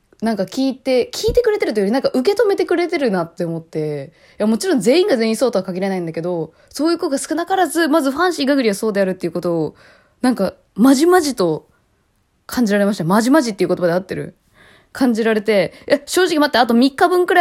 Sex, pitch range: female, 185-275 Hz